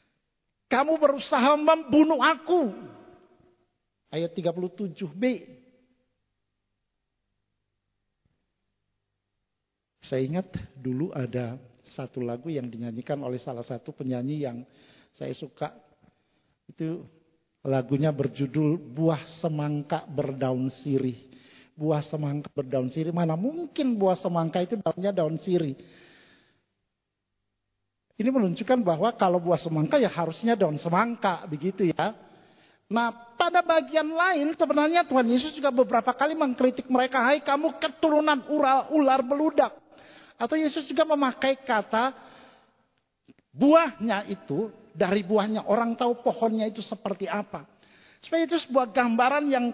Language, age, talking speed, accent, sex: Indonesian, 50-69, 110 wpm, native, male